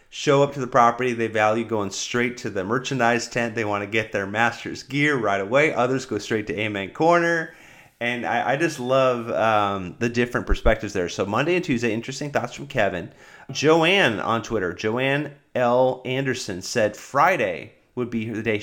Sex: male